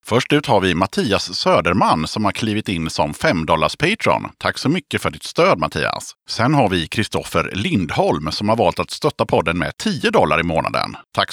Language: Swedish